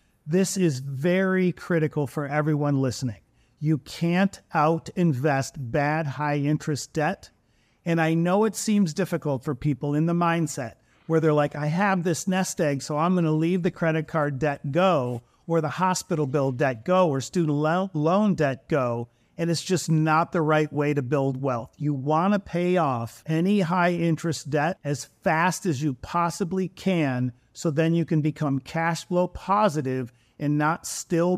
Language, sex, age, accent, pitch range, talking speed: English, male, 40-59, American, 145-175 Hz, 175 wpm